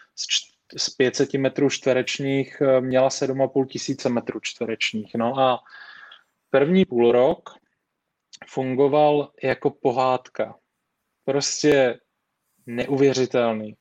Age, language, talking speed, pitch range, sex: 20-39, Czech, 75 wpm, 125-135 Hz, male